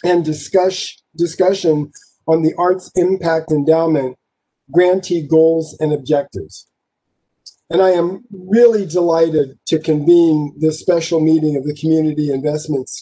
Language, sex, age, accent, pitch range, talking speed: English, male, 50-69, American, 160-185 Hz, 120 wpm